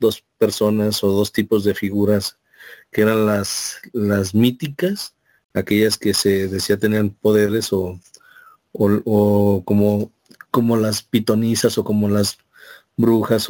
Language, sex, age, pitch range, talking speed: Spanish, male, 50-69, 105-115 Hz, 130 wpm